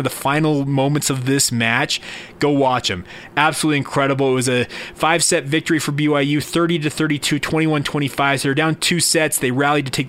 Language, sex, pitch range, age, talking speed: English, male, 125-145 Hz, 30-49, 200 wpm